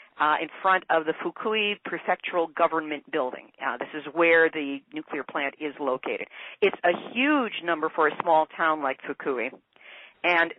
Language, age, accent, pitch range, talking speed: English, 50-69, American, 160-195 Hz, 165 wpm